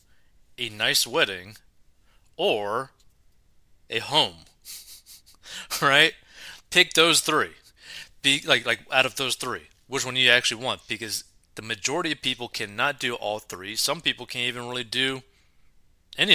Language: English